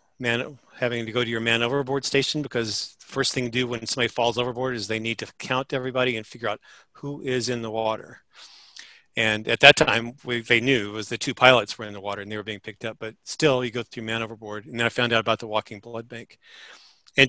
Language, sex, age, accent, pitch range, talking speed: English, male, 40-59, American, 110-130 Hz, 255 wpm